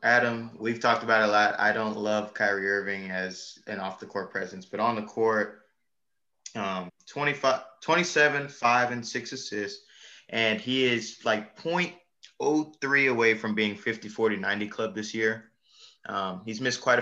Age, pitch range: 20-39, 105-125 Hz